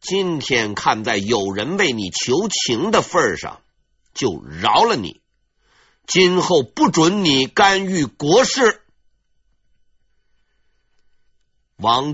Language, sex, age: Chinese, male, 50-69